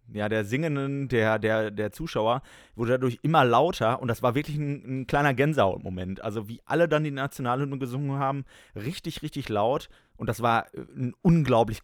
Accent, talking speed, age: German, 180 wpm, 30-49